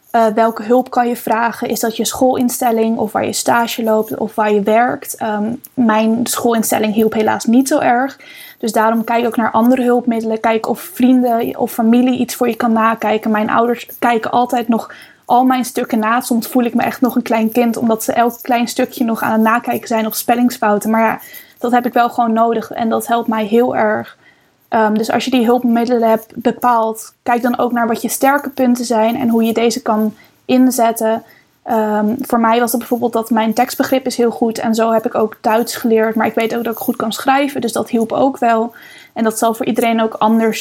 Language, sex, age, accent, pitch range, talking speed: English, female, 10-29, Dutch, 225-245 Hz, 220 wpm